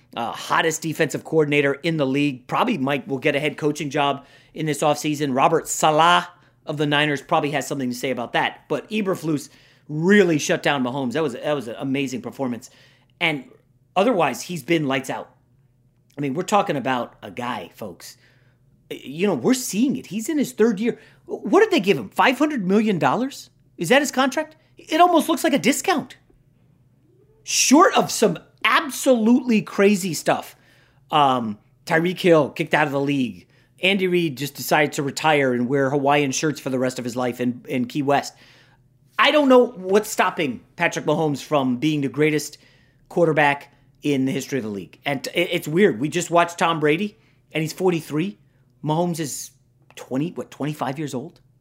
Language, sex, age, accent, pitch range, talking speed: English, male, 30-49, American, 130-185 Hz, 180 wpm